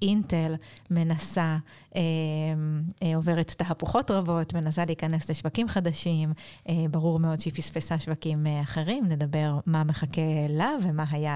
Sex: female